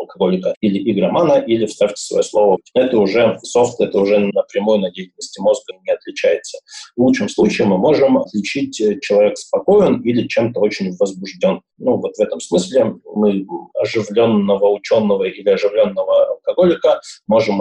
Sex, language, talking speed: male, Russian, 145 wpm